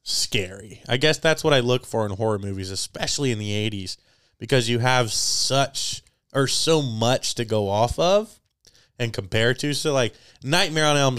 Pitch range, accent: 105-130 Hz, American